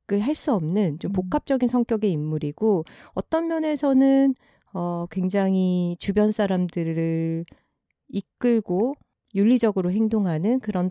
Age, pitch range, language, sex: 40-59, 165-235 Hz, Korean, female